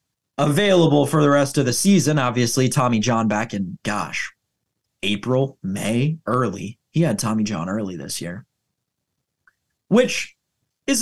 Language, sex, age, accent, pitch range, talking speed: English, male, 30-49, American, 125-195 Hz, 135 wpm